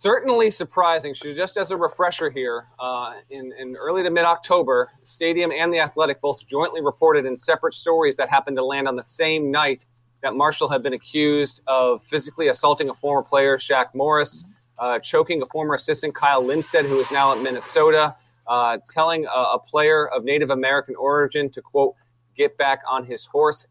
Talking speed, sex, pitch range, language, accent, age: 185 wpm, male, 135-170 Hz, English, American, 30-49